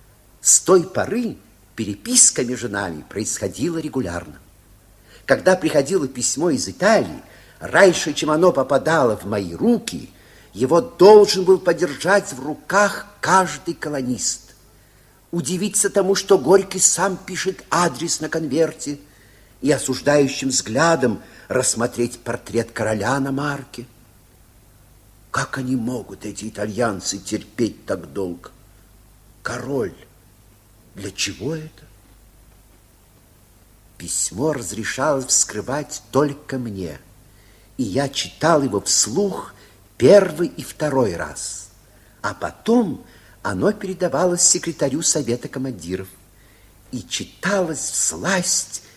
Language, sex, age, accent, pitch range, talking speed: Russian, male, 50-69, native, 105-170 Hz, 100 wpm